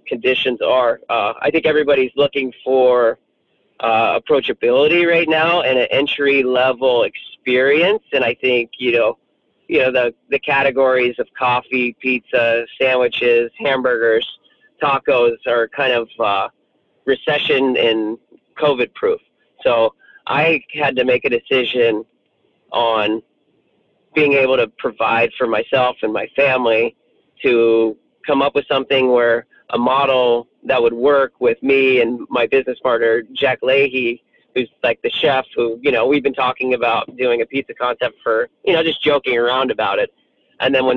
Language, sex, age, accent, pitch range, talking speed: English, male, 40-59, American, 125-185 Hz, 150 wpm